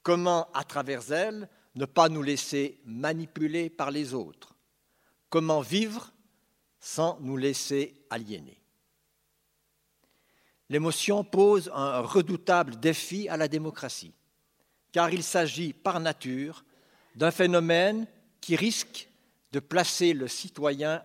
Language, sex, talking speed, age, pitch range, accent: French, male, 110 wpm, 60-79, 135-175 Hz, French